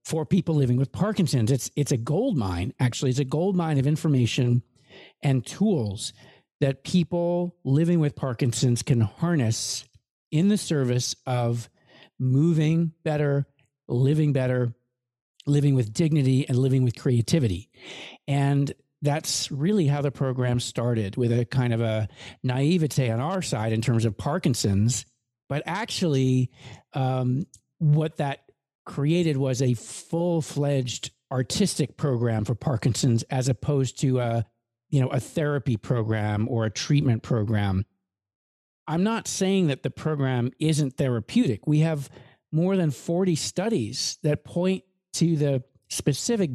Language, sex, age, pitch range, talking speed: English, male, 50-69, 120-155 Hz, 135 wpm